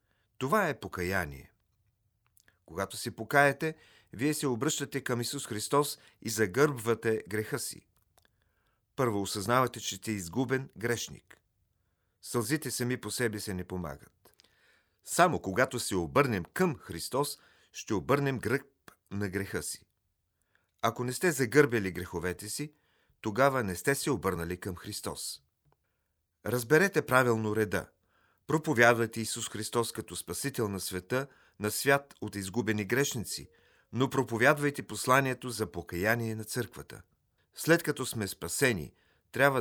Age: 40-59